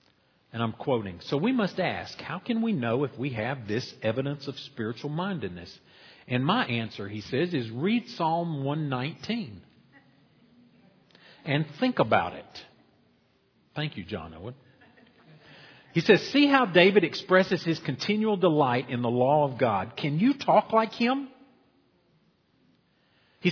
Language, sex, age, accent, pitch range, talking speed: English, male, 50-69, American, 115-175 Hz, 145 wpm